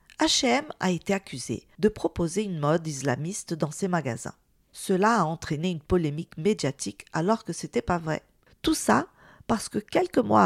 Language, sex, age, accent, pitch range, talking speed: French, female, 40-59, French, 155-220 Hz, 170 wpm